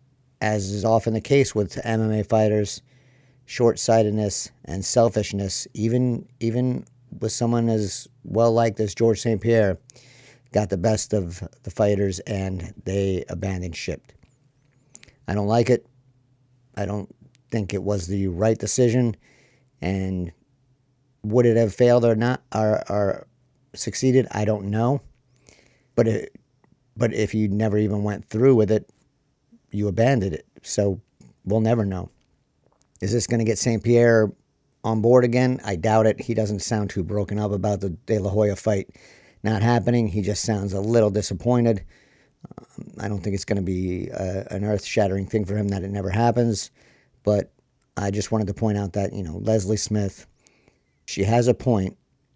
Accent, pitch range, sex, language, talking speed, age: American, 100-120 Hz, male, English, 165 wpm, 50-69